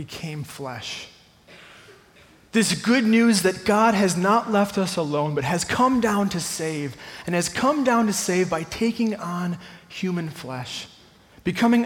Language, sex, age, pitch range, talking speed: English, male, 20-39, 165-210 Hz, 150 wpm